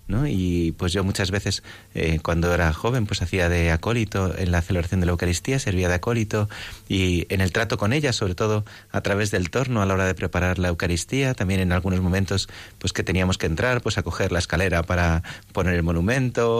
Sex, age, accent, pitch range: male, 30-49, Spanish, 95-115 Hz